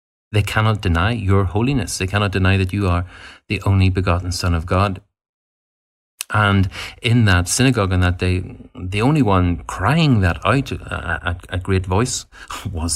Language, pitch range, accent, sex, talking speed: English, 90-110 Hz, Irish, male, 160 wpm